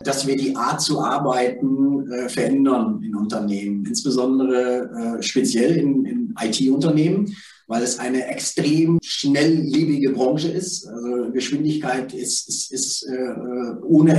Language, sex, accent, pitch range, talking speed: German, male, German, 130-155 Hz, 125 wpm